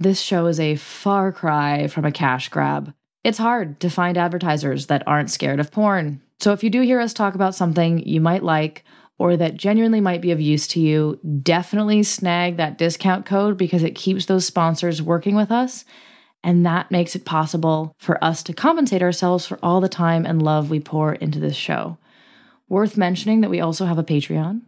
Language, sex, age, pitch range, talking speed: English, female, 20-39, 160-205 Hz, 200 wpm